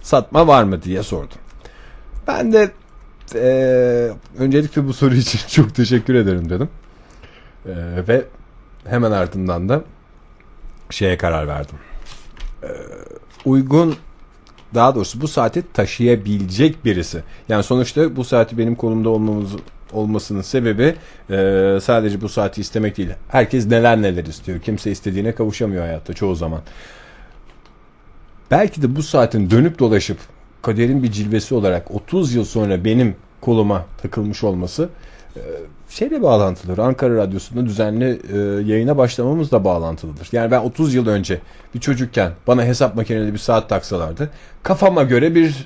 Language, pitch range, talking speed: Turkish, 100-130 Hz, 130 wpm